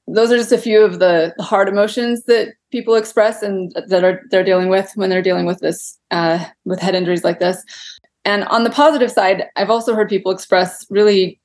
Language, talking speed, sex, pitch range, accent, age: English, 205 wpm, female, 180-210 Hz, American, 20-39